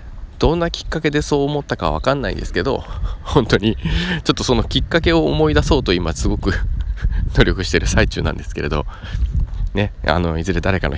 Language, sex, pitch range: Japanese, male, 80-105 Hz